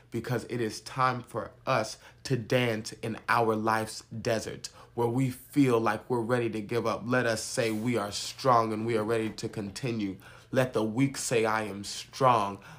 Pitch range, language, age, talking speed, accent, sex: 110-120 Hz, English, 30-49, 190 wpm, American, male